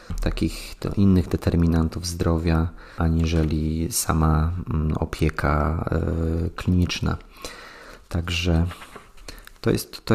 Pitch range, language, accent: 80-95 Hz, Polish, native